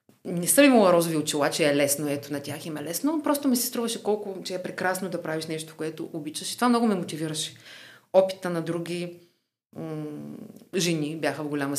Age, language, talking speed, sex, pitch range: 30-49, Bulgarian, 205 wpm, female, 155-185 Hz